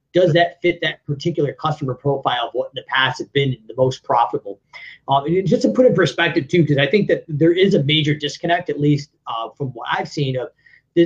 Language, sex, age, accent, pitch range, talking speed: English, male, 30-49, American, 140-165 Hz, 240 wpm